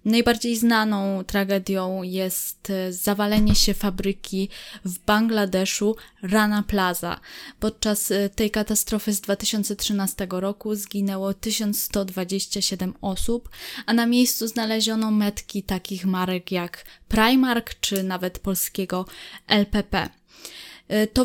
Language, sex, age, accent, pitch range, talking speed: Polish, female, 20-39, native, 190-220 Hz, 95 wpm